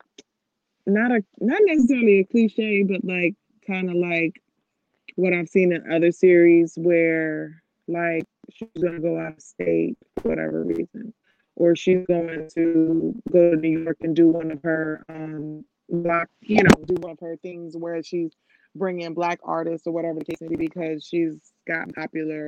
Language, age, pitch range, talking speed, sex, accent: English, 20-39, 165-185 Hz, 175 wpm, female, American